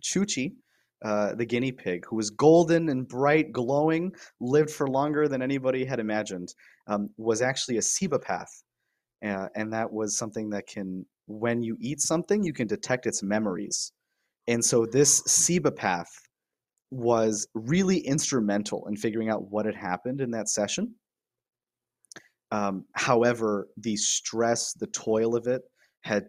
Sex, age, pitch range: male, 30-49, 100-125 Hz